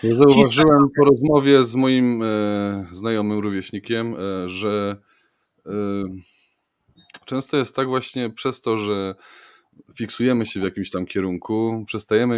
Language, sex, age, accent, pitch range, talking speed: Polish, male, 20-39, native, 105-125 Hz, 120 wpm